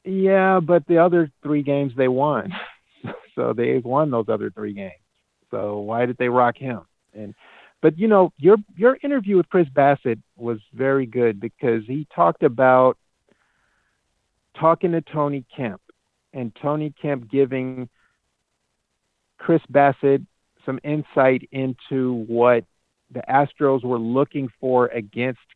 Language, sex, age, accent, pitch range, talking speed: English, male, 50-69, American, 120-140 Hz, 135 wpm